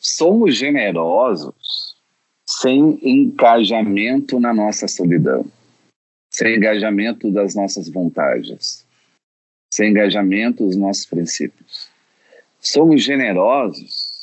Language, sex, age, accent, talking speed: Portuguese, male, 40-59, Brazilian, 80 wpm